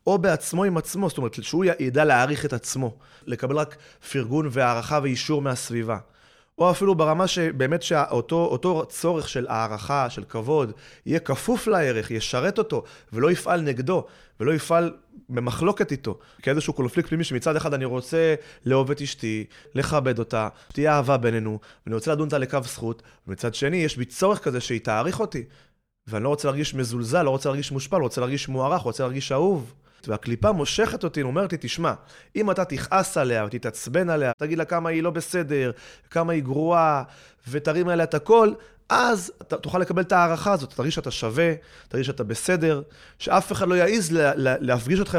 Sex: male